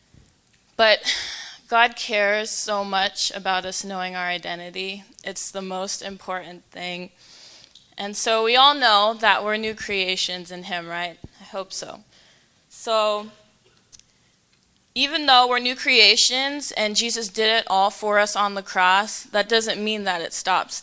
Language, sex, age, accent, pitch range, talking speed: English, female, 20-39, American, 185-235 Hz, 150 wpm